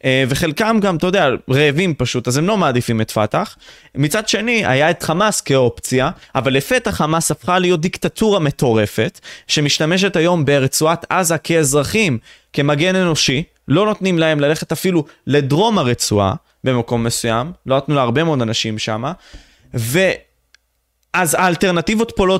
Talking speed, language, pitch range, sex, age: 135 wpm, Hebrew, 135-190 Hz, male, 20-39